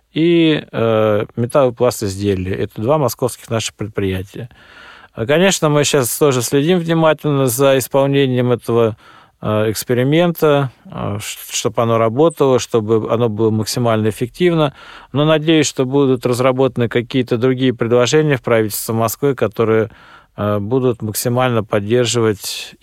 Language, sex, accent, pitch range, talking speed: Russian, male, native, 110-135 Hz, 120 wpm